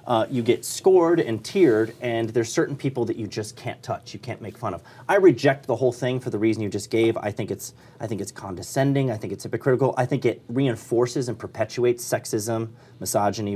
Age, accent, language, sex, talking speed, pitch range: 30-49, American, English, male, 220 wpm, 100-130 Hz